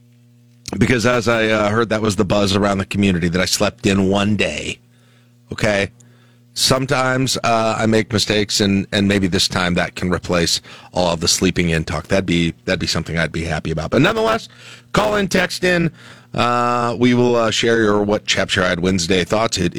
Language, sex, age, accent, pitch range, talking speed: English, male, 40-59, American, 100-130 Hz, 200 wpm